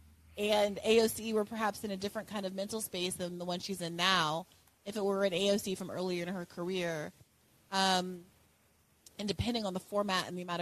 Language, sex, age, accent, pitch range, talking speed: English, female, 30-49, American, 175-205 Hz, 205 wpm